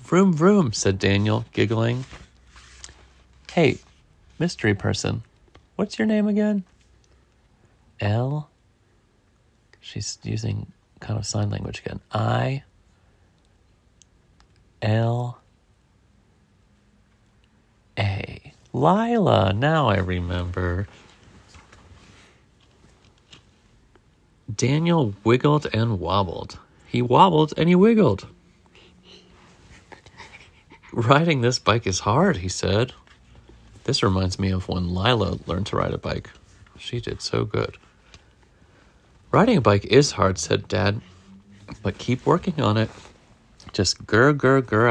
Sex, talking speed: male, 95 wpm